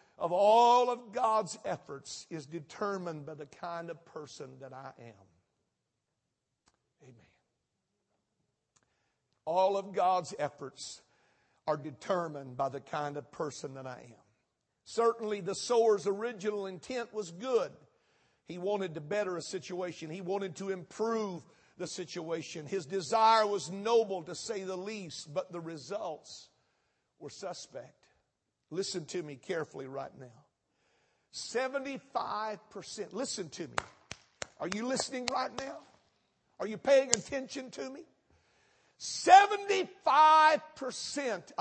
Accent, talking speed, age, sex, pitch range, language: American, 120 wpm, 50-69, male, 150-225 Hz, English